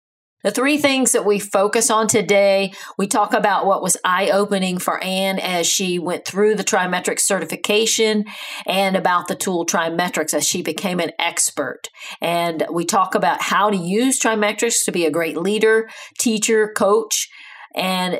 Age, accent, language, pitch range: 40-59, American, English, 180-215 Hz